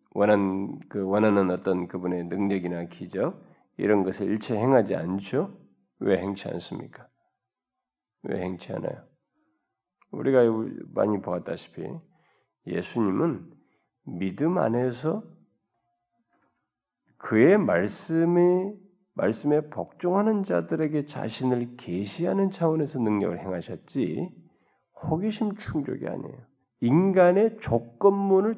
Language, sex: Korean, male